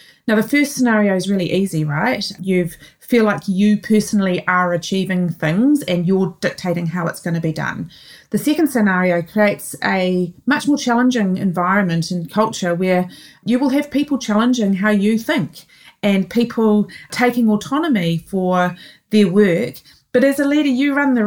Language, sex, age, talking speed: English, female, 30-49, 165 wpm